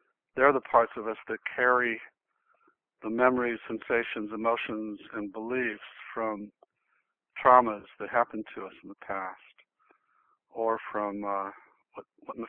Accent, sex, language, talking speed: American, male, English, 140 wpm